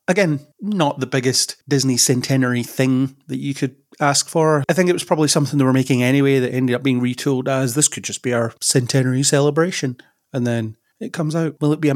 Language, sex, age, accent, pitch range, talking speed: English, male, 30-49, British, 120-145 Hz, 220 wpm